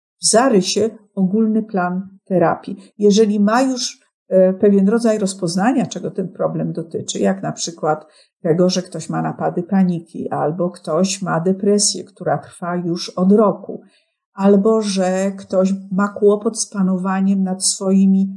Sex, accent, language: female, native, Polish